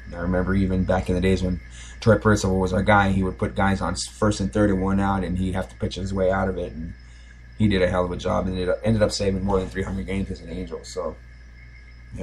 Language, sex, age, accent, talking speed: English, male, 20-39, American, 280 wpm